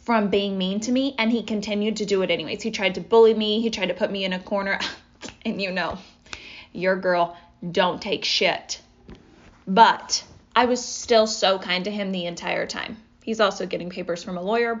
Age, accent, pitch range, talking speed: 20-39, American, 190-230 Hz, 205 wpm